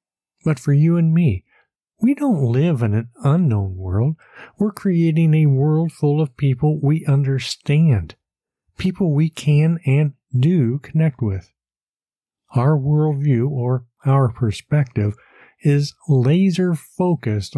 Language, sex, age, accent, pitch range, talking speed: English, male, 50-69, American, 120-155 Hz, 125 wpm